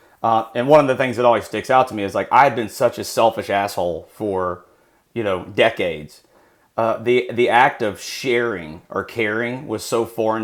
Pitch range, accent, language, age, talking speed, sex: 95-115 Hz, American, English, 30-49, 205 wpm, male